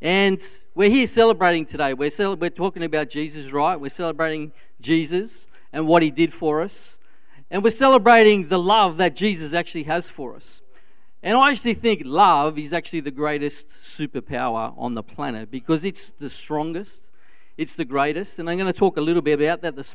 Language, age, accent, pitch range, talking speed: English, 40-59, Australian, 155-215 Hz, 185 wpm